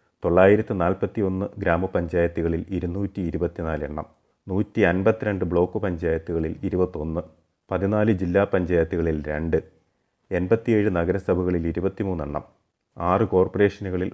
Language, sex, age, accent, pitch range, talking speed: Malayalam, male, 30-49, native, 85-105 Hz, 85 wpm